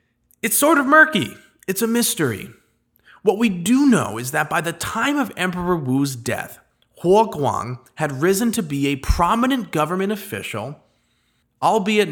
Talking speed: 155 wpm